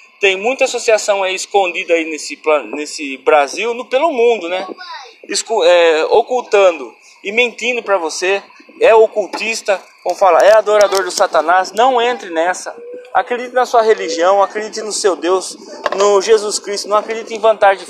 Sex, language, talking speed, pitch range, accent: male, Portuguese, 155 wpm, 185-235 Hz, Brazilian